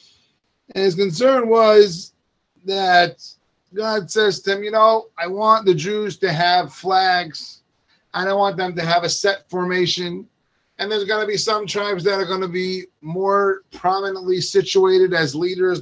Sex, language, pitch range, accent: male, English, 160-200 Hz, American